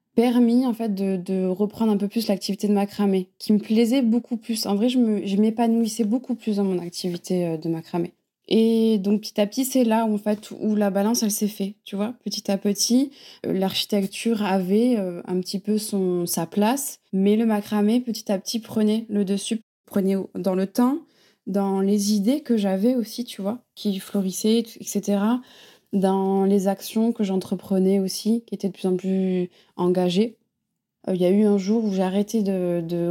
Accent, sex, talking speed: French, female, 195 wpm